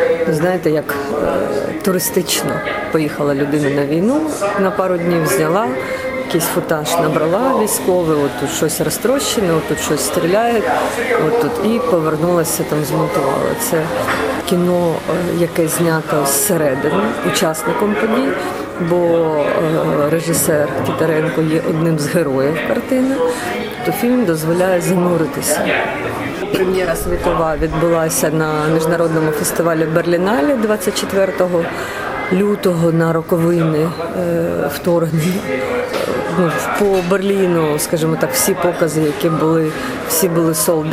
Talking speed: 105 wpm